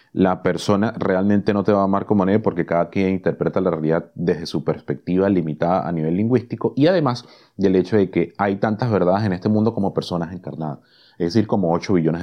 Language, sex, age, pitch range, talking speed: Spanish, male, 30-49, 90-125 Hz, 210 wpm